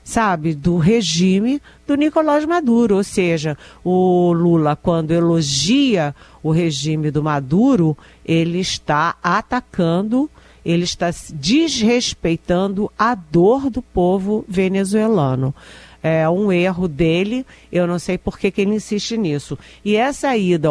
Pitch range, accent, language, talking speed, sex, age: 155-205 Hz, Brazilian, Portuguese, 125 wpm, female, 50-69